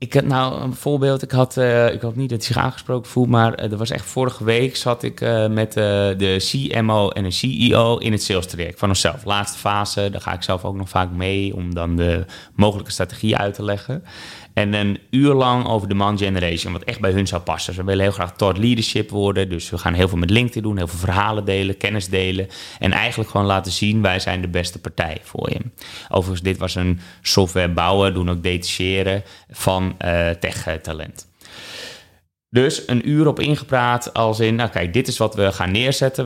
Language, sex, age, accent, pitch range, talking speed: Dutch, male, 20-39, Dutch, 95-120 Hz, 220 wpm